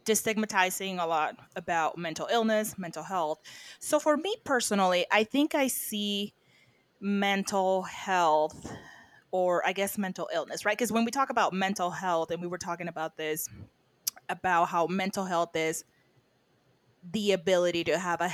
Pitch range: 165-200 Hz